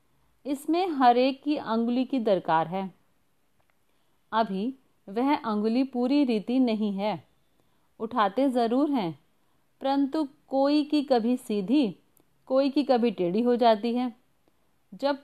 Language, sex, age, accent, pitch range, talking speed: Hindi, female, 40-59, native, 215-270 Hz, 120 wpm